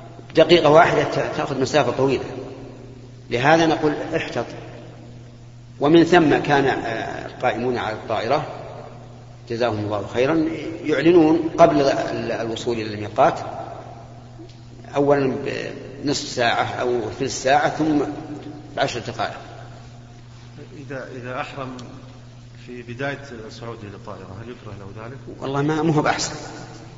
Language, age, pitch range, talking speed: Arabic, 40-59, 120-145 Hz, 100 wpm